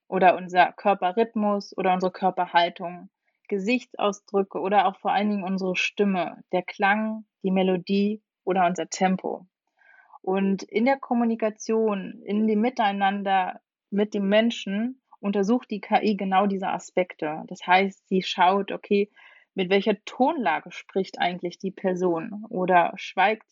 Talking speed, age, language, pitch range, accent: 130 wpm, 30-49, German, 185-215 Hz, German